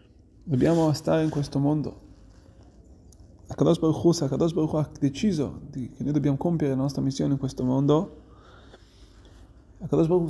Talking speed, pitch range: 135 wpm, 105-150 Hz